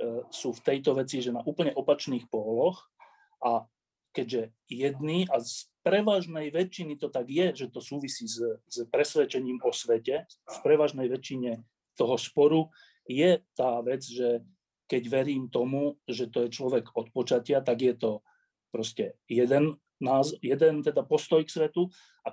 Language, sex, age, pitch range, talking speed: Slovak, male, 40-59, 120-170 Hz, 155 wpm